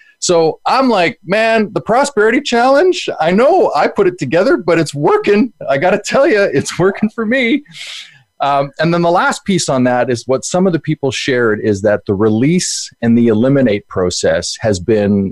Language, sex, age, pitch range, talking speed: English, male, 30-49, 105-165 Hz, 195 wpm